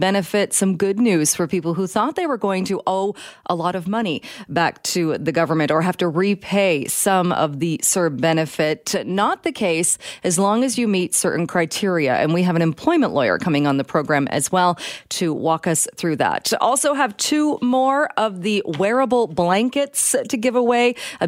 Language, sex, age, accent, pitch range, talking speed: English, female, 30-49, American, 165-205 Hz, 195 wpm